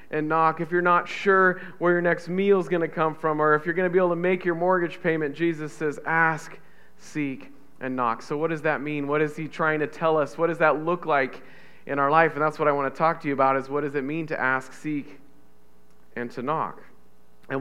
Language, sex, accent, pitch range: English, male, American, 125-165 Hz